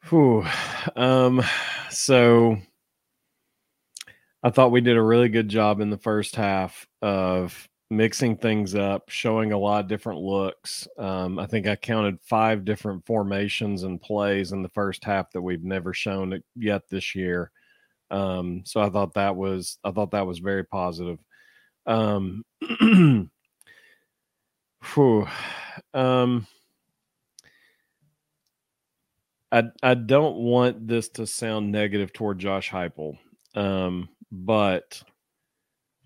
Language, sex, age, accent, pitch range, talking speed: English, male, 40-59, American, 95-110 Hz, 125 wpm